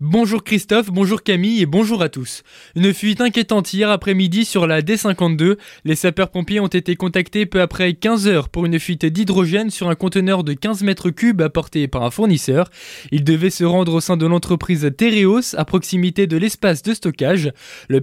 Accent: French